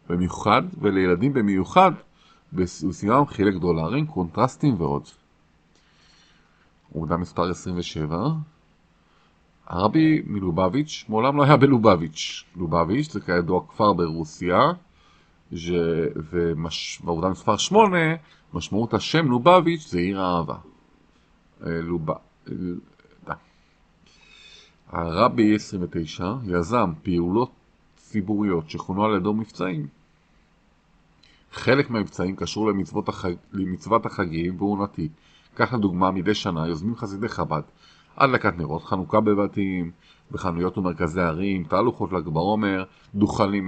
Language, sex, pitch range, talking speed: Hebrew, male, 85-110 Hz, 100 wpm